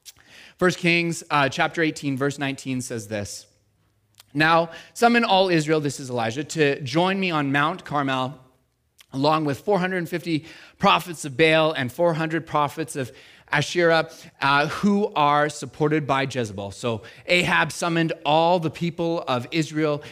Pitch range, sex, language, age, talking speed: 145-180 Hz, male, English, 30-49, 140 wpm